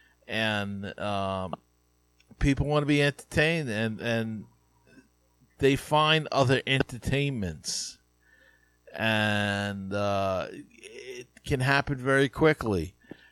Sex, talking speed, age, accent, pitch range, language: male, 90 wpm, 50-69, American, 105-150 Hz, English